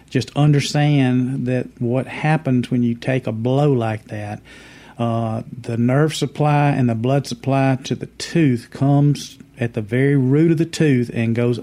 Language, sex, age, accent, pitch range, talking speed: English, male, 50-69, American, 120-140 Hz, 170 wpm